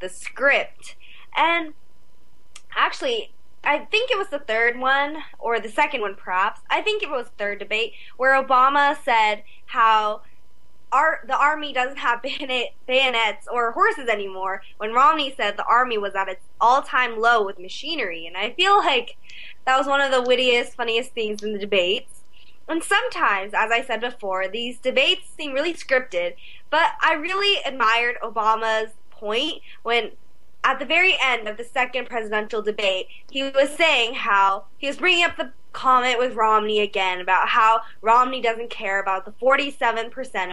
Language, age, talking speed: English, 20-39, 160 wpm